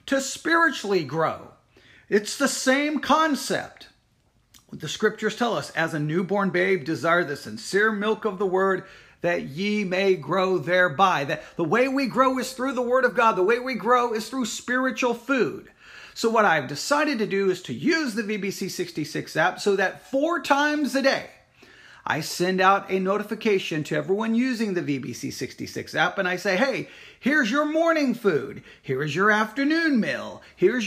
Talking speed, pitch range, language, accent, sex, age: 175 wpm, 185-260 Hz, English, American, male, 40-59